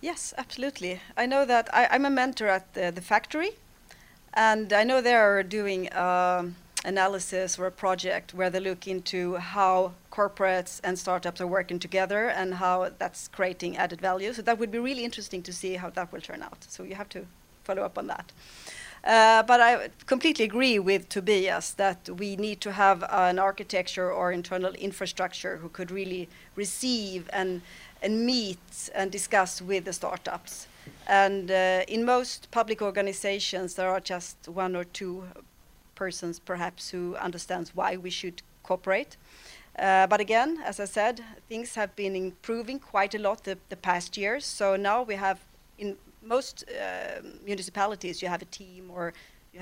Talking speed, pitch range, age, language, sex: 170 wpm, 185-210 Hz, 30-49, English, female